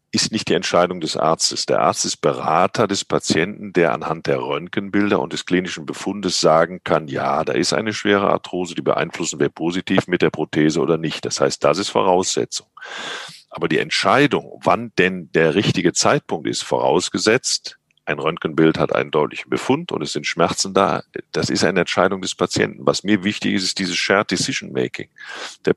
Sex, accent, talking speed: male, German, 185 wpm